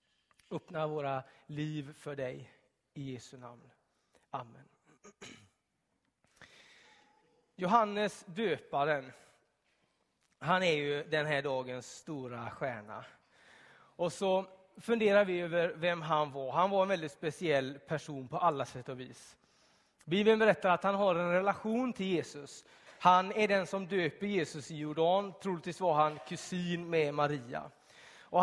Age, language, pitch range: 30-49, Swedish, 155-205 Hz